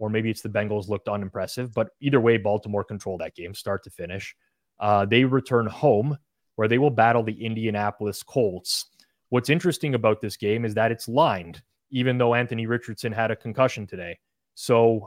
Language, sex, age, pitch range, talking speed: English, male, 20-39, 105-125 Hz, 185 wpm